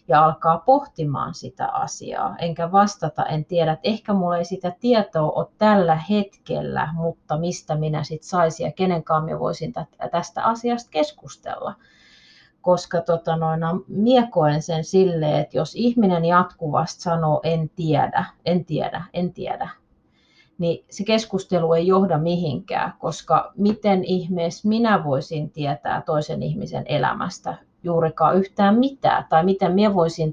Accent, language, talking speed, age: native, Finnish, 135 wpm, 30-49